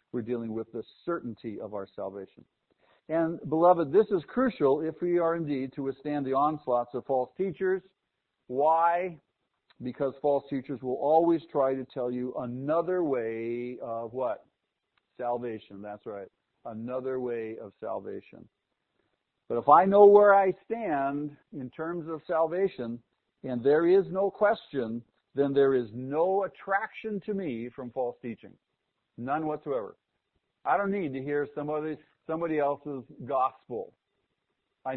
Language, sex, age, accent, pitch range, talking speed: English, male, 50-69, American, 125-175 Hz, 140 wpm